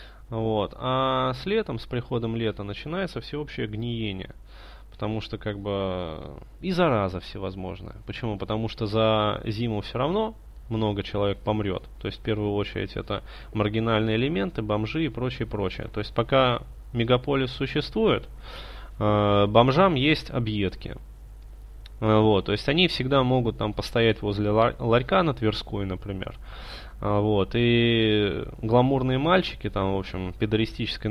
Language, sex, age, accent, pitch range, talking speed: Russian, male, 20-39, native, 105-130 Hz, 135 wpm